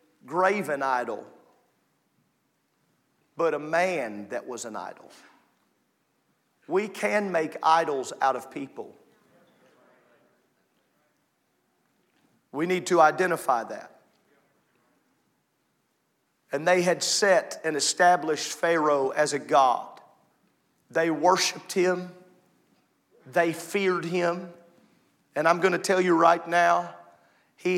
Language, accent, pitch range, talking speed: English, American, 155-180 Hz, 100 wpm